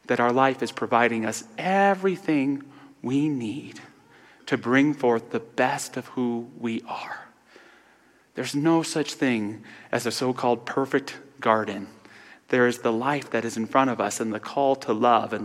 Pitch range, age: 110-140 Hz, 30-49